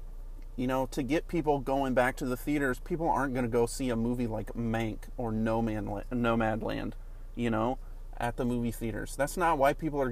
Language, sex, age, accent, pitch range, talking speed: English, male, 30-49, American, 110-135 Hz, 215 wpm